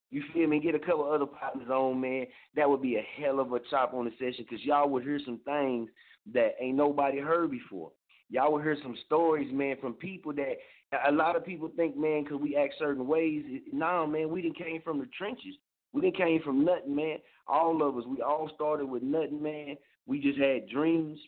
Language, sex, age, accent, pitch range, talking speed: English, male, 30-49, American, 135-165 Hz, 225 wpm